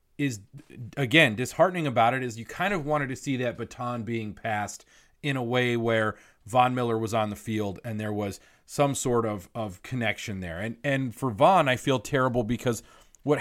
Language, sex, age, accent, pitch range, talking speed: English, male, 30-49, American, 110-140 Hz, 195 wpm